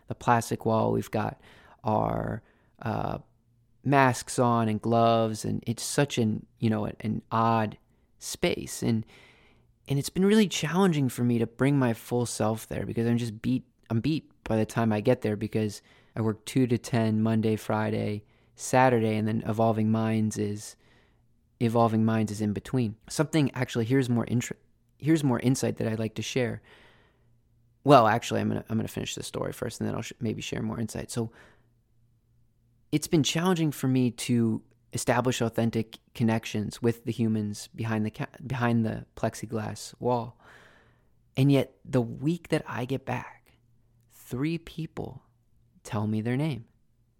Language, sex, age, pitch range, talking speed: English, male, 20-39, 110-125 Hz, 165 wpm